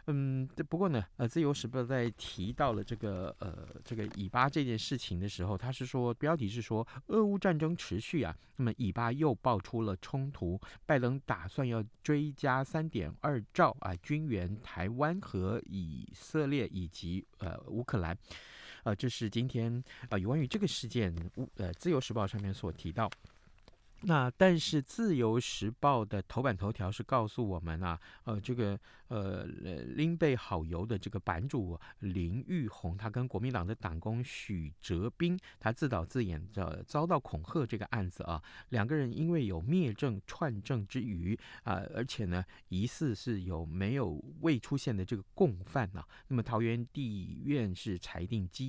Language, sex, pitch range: Chinese, male, 95-135 Hz